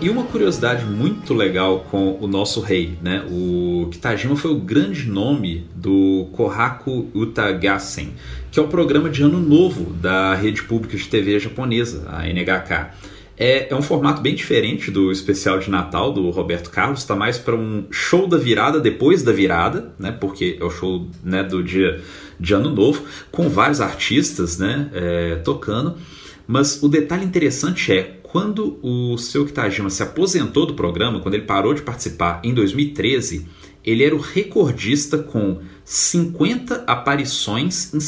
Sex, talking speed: male, 160 wpm